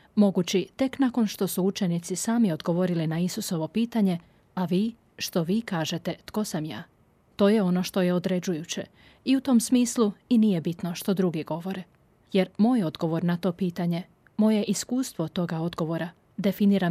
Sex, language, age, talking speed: female, Croatian, 30-49, 165 wpm